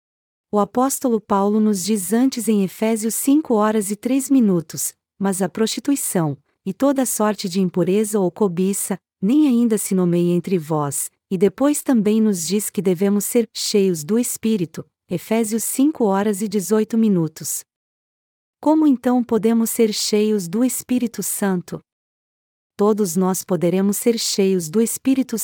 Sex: female